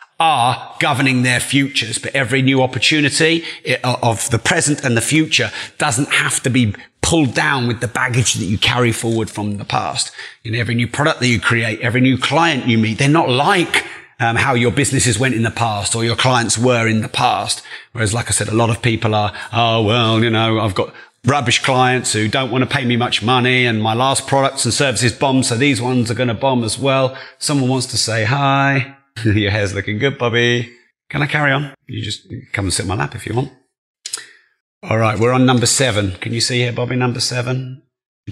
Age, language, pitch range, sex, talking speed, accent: 30-49, English, 115-135 Hz, male, 220 wpm, British